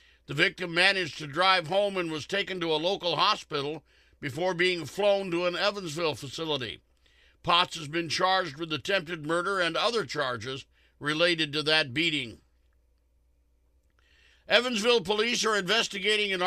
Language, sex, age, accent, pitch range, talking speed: English, male, 60-79, American, 160-200 Hz, 140 wpm